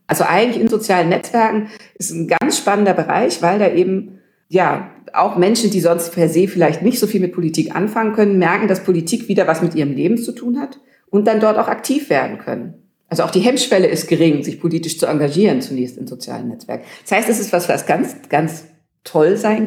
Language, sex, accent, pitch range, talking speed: German, female, German, 170-220 Hz, 215 wpm